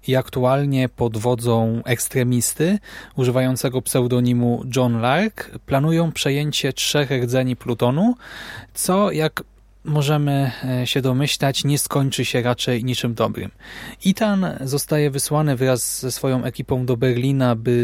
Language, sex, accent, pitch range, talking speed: Polish, male, native, 120-140 Hz, 120 wpm